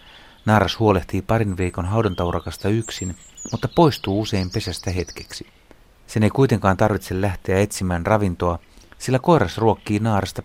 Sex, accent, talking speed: male, native, 125 wpm